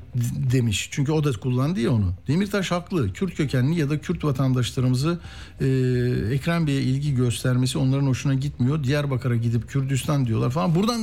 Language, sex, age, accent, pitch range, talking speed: Turkish, male, 60-79, native, 125-170 Hz, 150 wpm